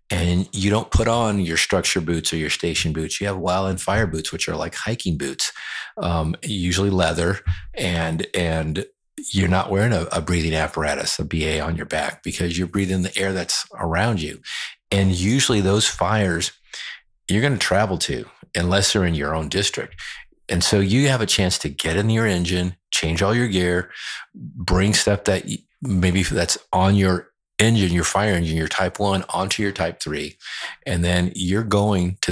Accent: American